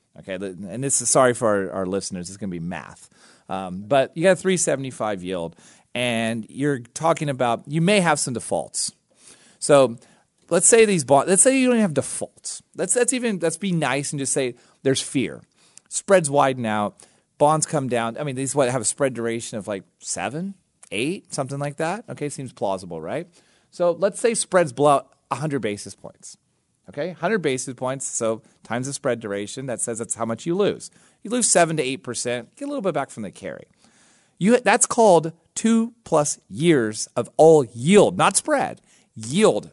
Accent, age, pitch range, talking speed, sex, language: American, 30-49, 110-160 Hz, 190 wpm, male, English